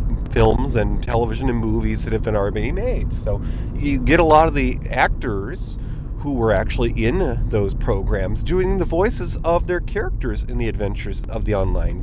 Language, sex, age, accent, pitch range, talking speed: English, male, 30-49, American, 95-130 Hz, 180 wpm